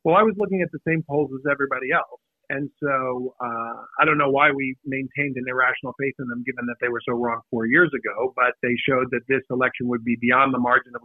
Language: English